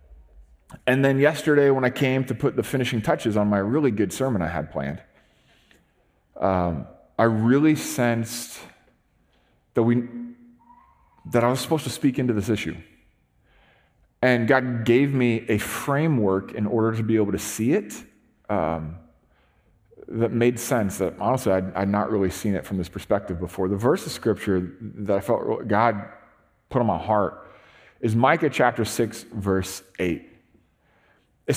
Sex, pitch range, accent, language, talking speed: male, 100-135 Hz, American, English, 160 wpm